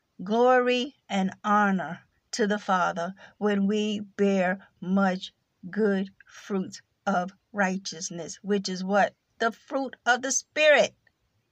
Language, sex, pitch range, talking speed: English, female, 200-245 Hz, 115 wpm